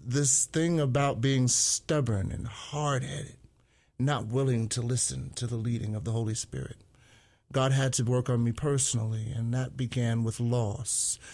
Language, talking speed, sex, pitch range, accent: English, 160 wpm, male, 110-130 Hz, American